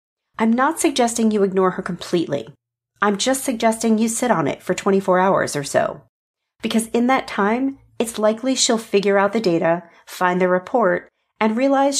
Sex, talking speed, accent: female, 175 wpm, American